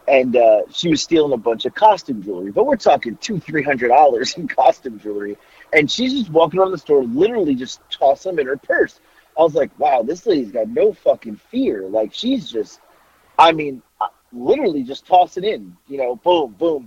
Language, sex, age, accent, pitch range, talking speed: English, male, 30-49, American, 125-185 Hz, 205 wpm